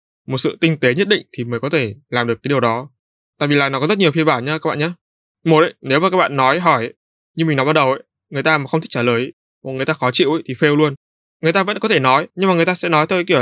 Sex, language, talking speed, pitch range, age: male, Vietnamese, 330 wpm, 120-160 Hz, 20-39